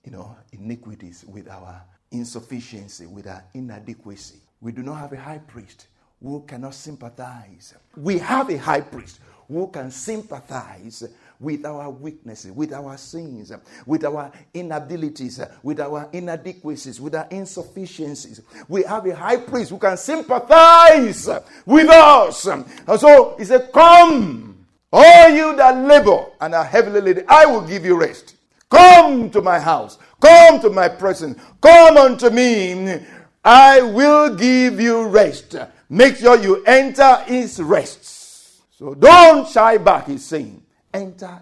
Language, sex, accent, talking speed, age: English, male, Nigerian, 145 wpm, 60-79